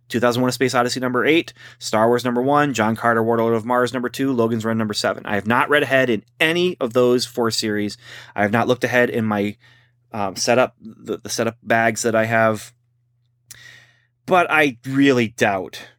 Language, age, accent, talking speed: English, 30-49, American, 200 wpm